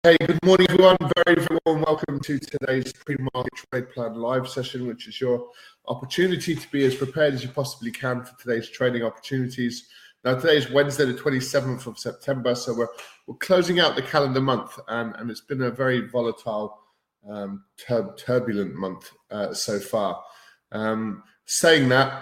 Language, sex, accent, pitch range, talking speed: English, male, British, 110-140 Hz, 175 wpm